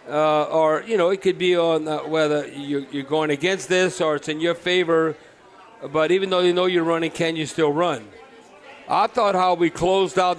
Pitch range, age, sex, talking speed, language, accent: 165-200 Hz, 50-69, male, 210 wpm, English, American